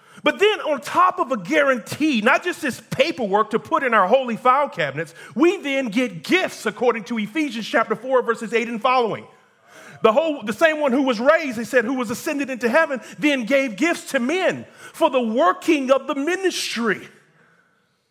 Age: 40-59